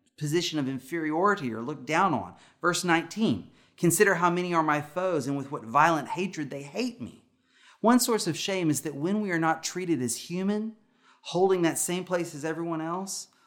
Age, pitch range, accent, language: 30-49, 125-190 Hz, American, English